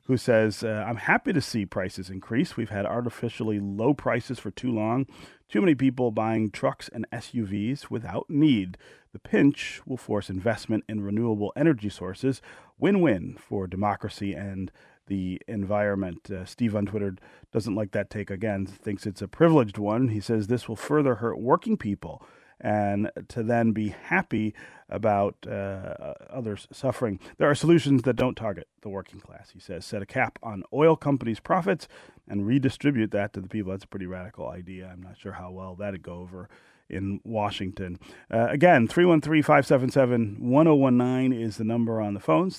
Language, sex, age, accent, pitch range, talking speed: English, male, 40-59, American, 100-125 Hz, 180 wpm